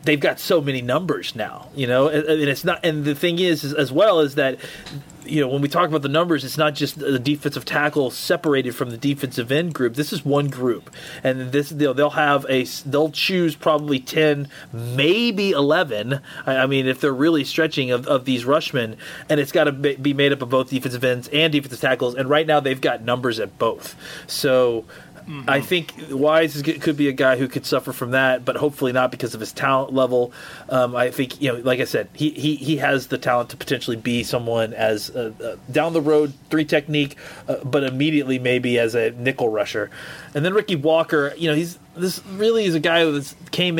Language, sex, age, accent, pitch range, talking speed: English, male, 30-49, American, 130-155 Hz, 220 wpm